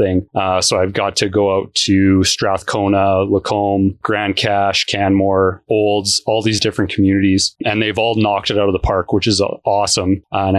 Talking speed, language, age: 180 wpm, English, 30-49